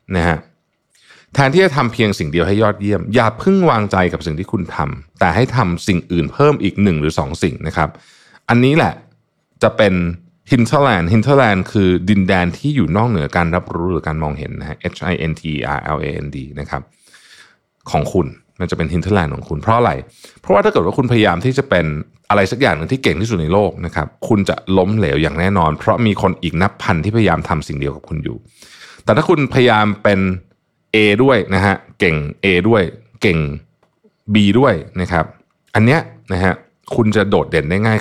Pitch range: 85-115 Hz